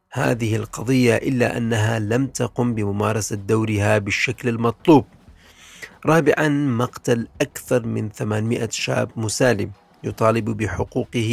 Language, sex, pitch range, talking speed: Arabic, male, 105-125 Hz, 100 wpm